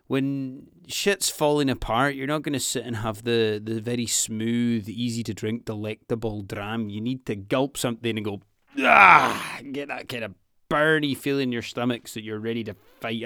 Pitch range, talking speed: 105-135 Hz, 200 wpm